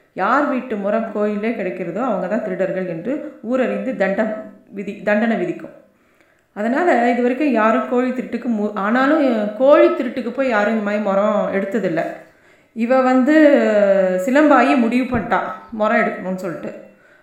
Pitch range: 205-255 Hz